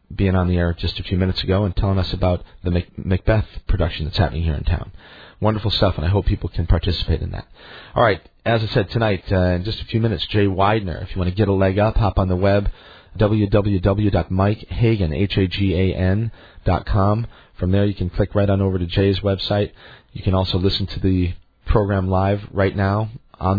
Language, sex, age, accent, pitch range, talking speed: English, male, 40-59, American, 90-105 Hz, 205 wpm